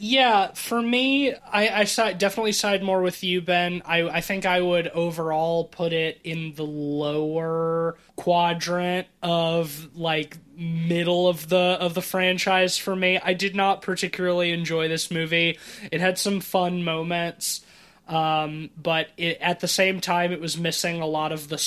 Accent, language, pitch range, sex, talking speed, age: American, English, 160-185 Hz, male, 165 wpm, 20-39